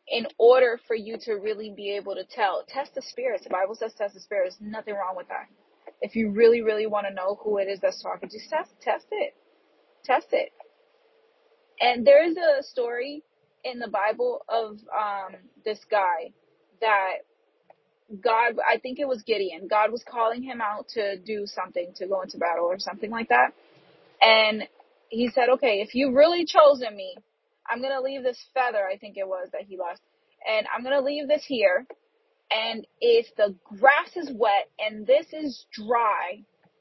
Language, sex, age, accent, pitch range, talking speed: English, female, 30-49, American, 215-305 Hz, 190 wpm